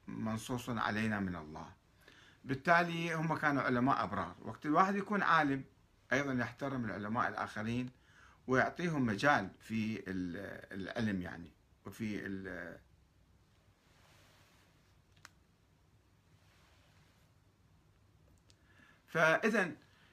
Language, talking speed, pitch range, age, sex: Arabic, 75 wpm, 100-160 Hz, 50-69, male